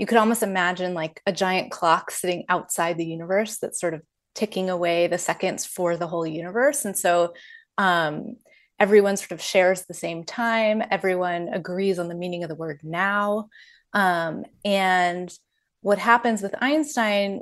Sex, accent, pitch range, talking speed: female, American, 170-210 Hz, 165 wpm